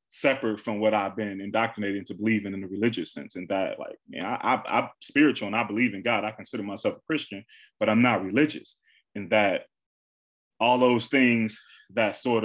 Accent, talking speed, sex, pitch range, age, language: American, 200 wpm, male, 100-120 Hz, 20-39, English